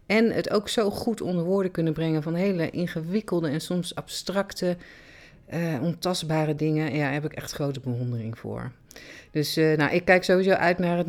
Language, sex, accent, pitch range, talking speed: Dutch, female, Dutch, 140-180 Hz, 190 wpm